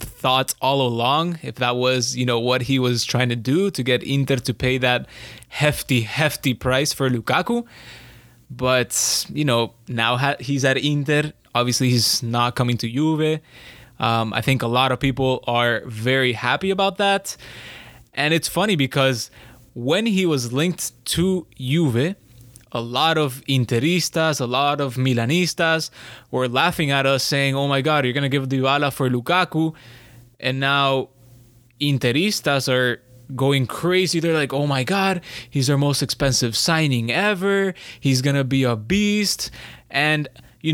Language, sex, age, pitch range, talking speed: English, male, 20-39, 120-150 Hz, 160 wpm